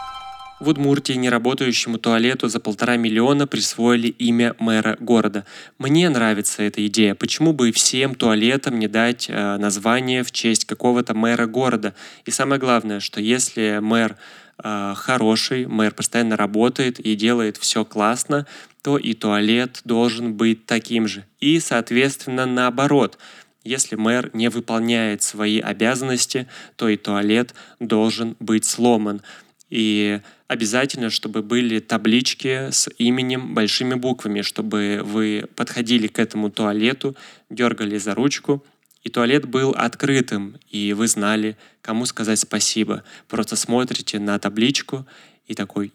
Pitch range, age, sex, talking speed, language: 110-130 Hz, 20-39, male, 130 wpm, Russian